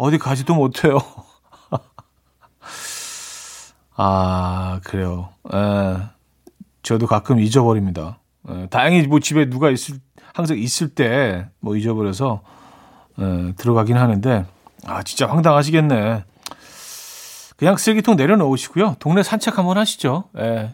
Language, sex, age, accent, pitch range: Korean, male, 40-59, native, 105-155 Hz